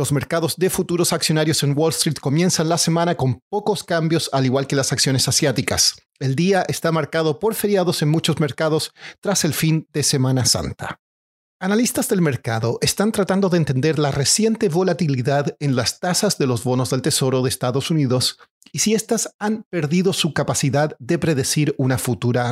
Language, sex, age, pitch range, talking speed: Spanish, male, 40-59, 135-175 Hz, 180 wpm